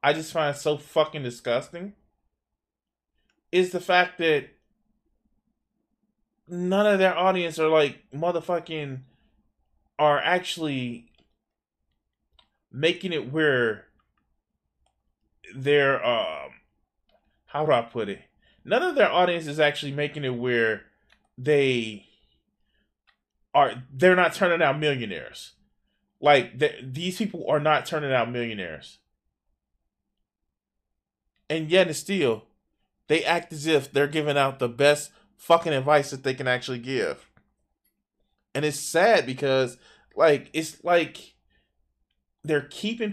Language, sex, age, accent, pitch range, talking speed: English, male, 20-39, American, 125-175 Hz, 115 wpm